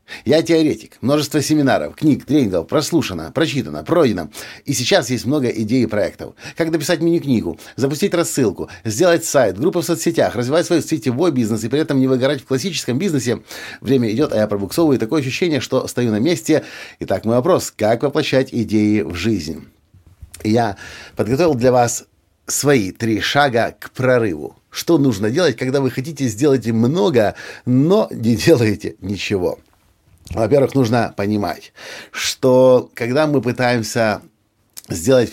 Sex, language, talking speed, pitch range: male, Russian, 150 wpm, 105-145 Hz